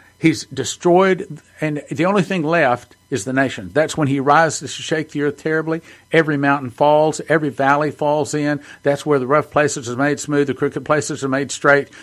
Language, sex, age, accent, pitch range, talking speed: English, male, 50-69, American, 125-150 Hz, 200 wpm